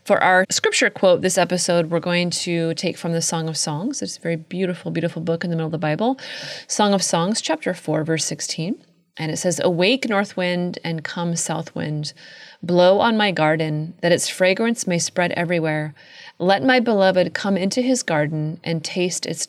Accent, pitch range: American, 165-200 Hz